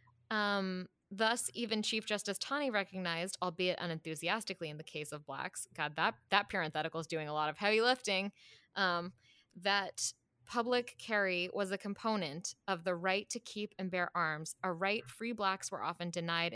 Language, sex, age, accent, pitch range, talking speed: English, female, 20-39, American, 190-275 Hz, 170 wpm